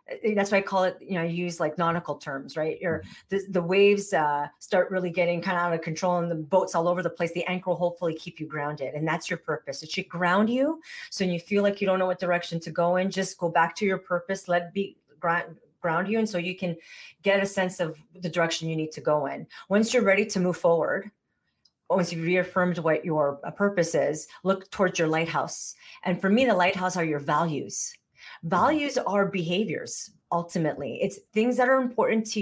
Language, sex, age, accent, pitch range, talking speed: English, female, 40-59, American, 165-195 Hz, 220 wpm